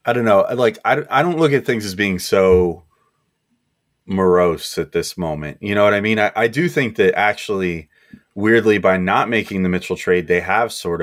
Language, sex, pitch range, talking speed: English, male, 90-115 Hz, 200 wpm